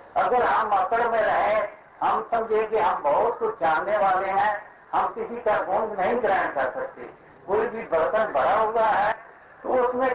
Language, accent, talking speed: Hindi, native, 175 wpm